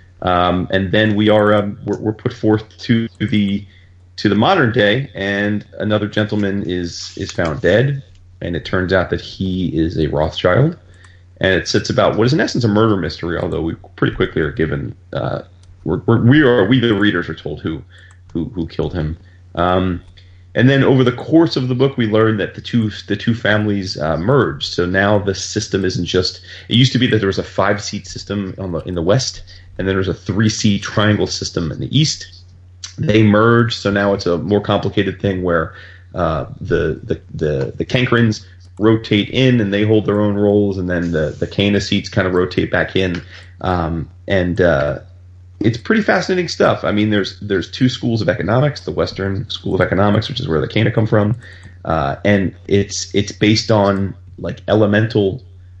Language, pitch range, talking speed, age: English, 90-110 Hz, 200 wpm, 30-49